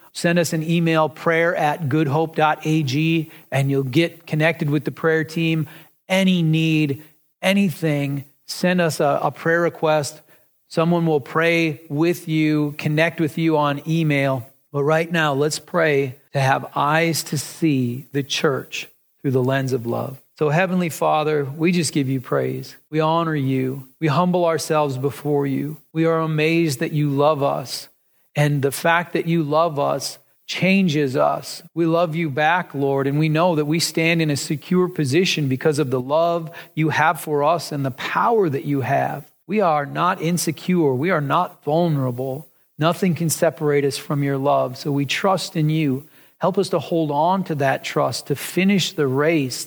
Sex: male